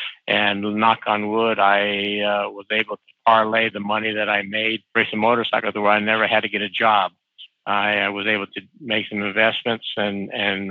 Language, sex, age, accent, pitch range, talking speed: English, male, 60-79, American, 105-125 Hz, 195 wpm